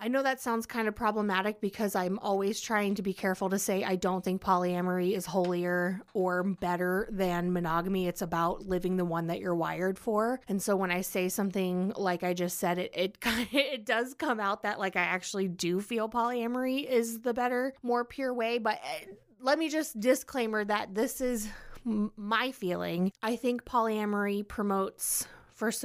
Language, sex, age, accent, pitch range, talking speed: English, female, 20-39, American, 185-225 Hz, 185 wpm